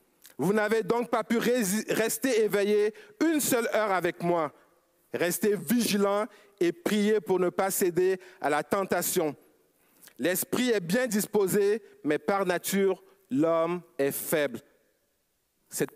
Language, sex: French, male